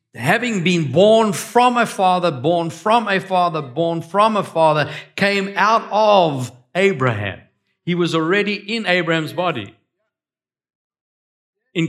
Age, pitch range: 60-79, 145-205 Hz